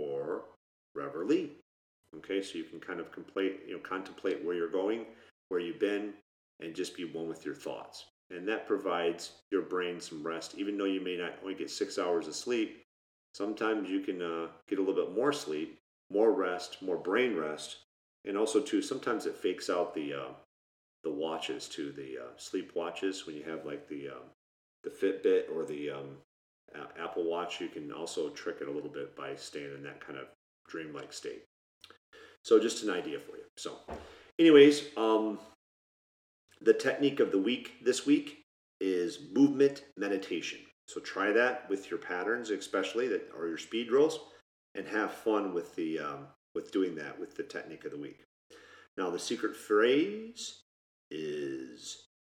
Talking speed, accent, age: 175 wpm, American, 40-59